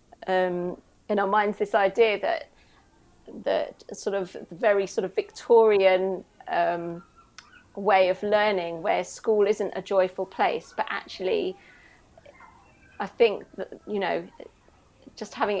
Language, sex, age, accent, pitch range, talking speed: English, female, 30-49, British, 185-225 Hz, 125 wpm